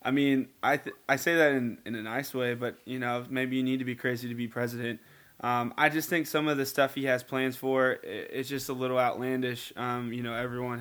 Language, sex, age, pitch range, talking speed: English, male, 20-39, 120-130 Hz, 255 wpm